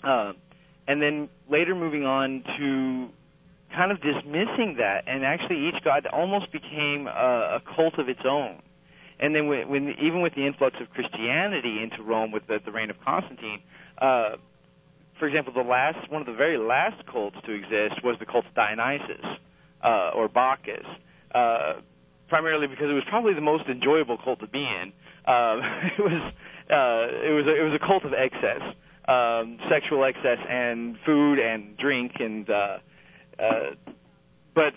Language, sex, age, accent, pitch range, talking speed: English, male, 40-59, American, 115-155 Hz, 170 wpm